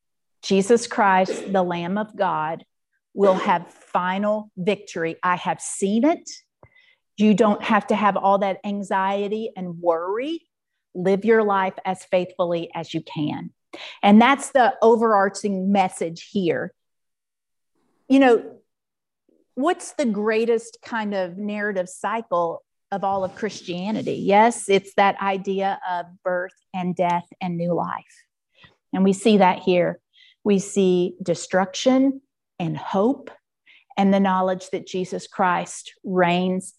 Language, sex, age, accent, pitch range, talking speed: English, female, 50-69, American, 185-225 Hz, 130 wpm